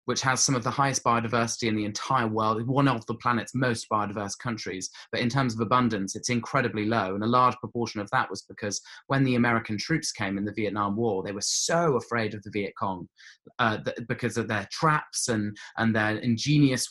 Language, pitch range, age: English, 105-125 Hz, 20-39